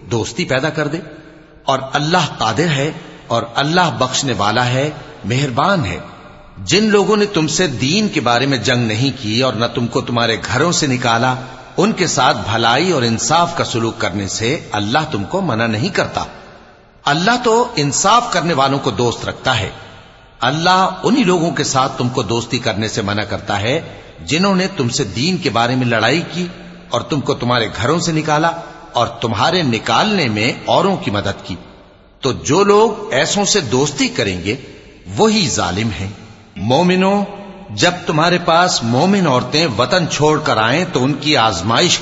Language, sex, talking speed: English, male, 165 wpm